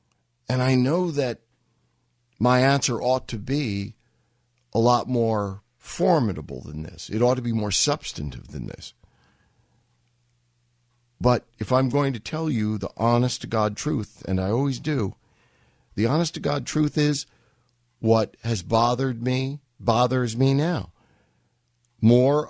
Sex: male